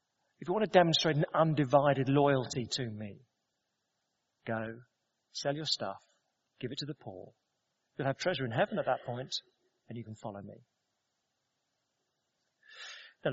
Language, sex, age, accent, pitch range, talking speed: English, male, 40-59, British, 130-185 Hz, 150 wpm